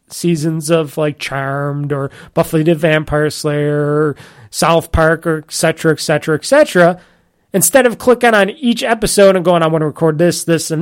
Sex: male